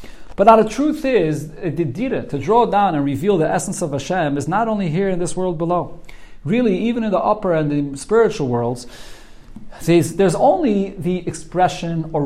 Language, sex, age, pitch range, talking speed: English, male, 40-59, 145-185 Hz, 185 wpm